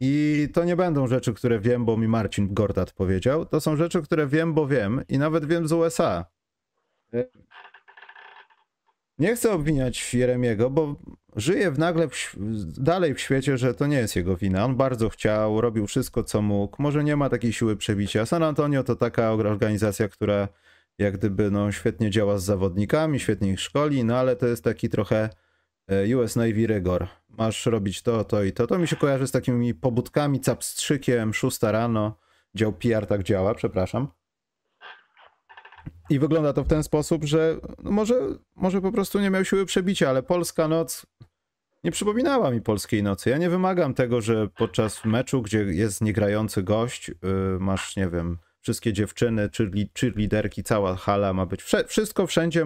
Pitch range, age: 105-150 Hz, 30-49